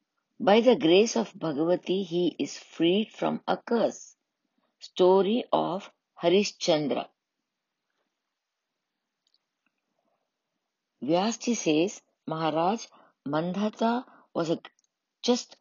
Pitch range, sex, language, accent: 170-235 Hz, female, English, Indian